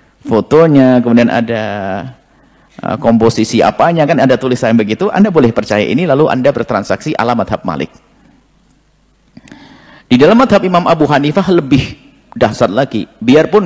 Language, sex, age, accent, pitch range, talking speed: Indonesian, male, 50-69, native, 125-180 Hz, 125 wpm